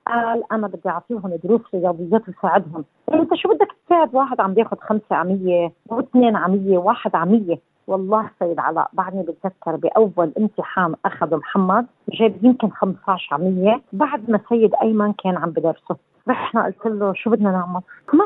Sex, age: female, 40-59